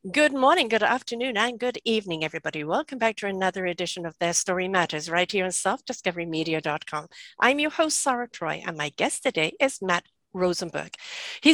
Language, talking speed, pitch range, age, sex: English, 175 wpm, 185-245 Hz, 60-79, female